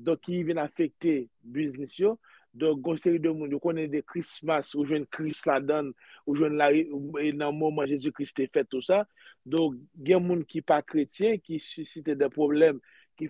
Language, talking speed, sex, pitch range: French, 210 wpm, male, 145-175 Hz